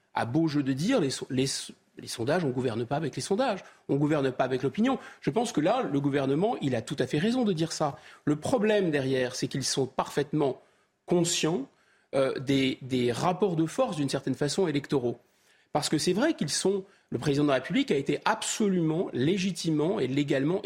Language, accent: French, French